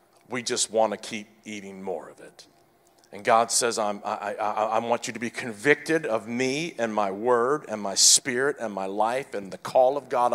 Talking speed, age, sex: 210 wpm, 50-69, male